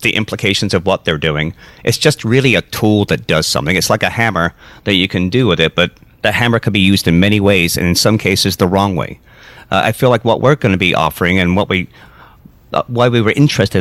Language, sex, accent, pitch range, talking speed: English, male, American, 95-120 Hz, 250 wpm